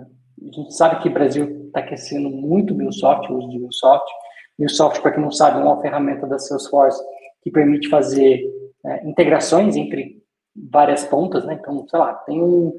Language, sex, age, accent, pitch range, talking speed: Portuguese, male, 20-39, Brazilian, 145-175 Hz, 170 wpm